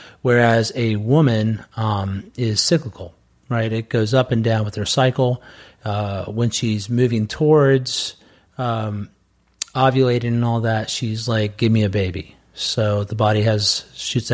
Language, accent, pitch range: English, American, 110-135 Hz